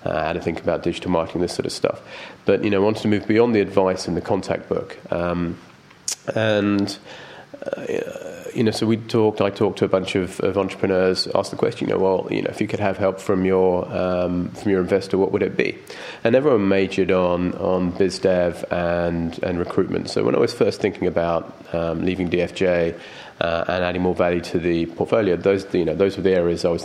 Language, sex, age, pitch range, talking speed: English, male, 30-49, 85-100 Hz, 225 wpm